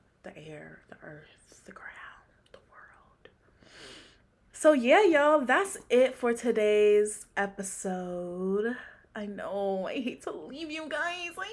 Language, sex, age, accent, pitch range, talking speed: English, female, 20-39, American, 205-345 Hz, 135 wpm